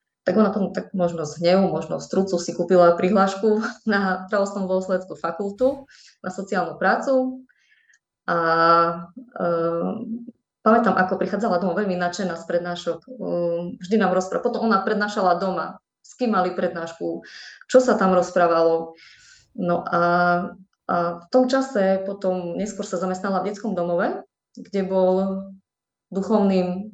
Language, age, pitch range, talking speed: Slovak, 20-39, 180-210 Hz, 140 wpm